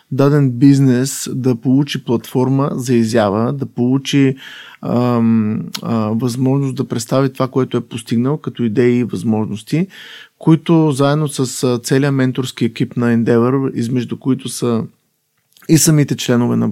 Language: Bulgarian